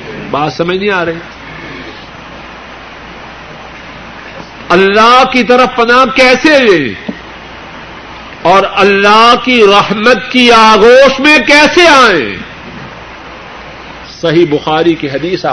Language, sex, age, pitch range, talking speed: Urdu, male, 50-69, 165-240 Hz, 90 wpm